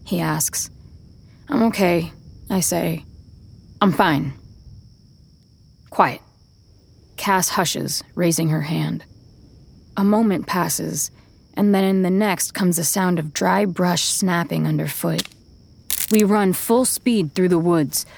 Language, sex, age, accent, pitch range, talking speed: English, female, 20-39, American, 155-200 Hz, 120 wpm